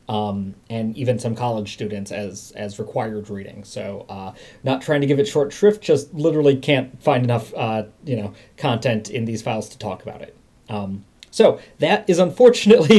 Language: English